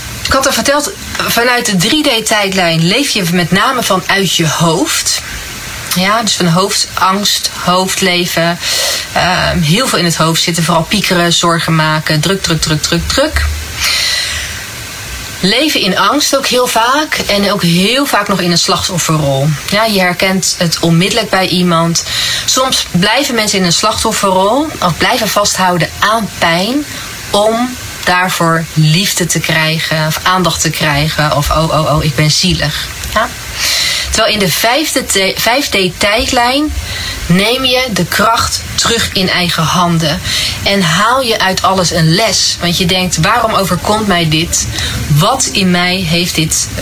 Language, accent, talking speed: Dutch, Dutch, 145 wpm